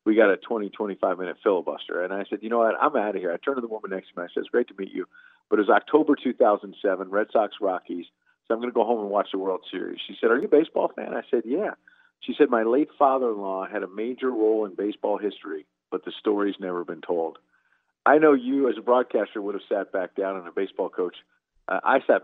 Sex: male